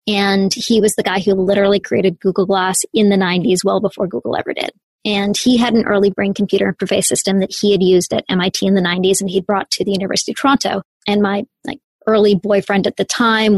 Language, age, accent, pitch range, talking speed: English, 20-39, American, 195-220 Hz, 230 wpm